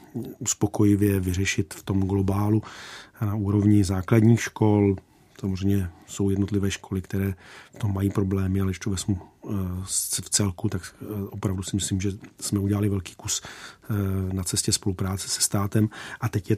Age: 40-59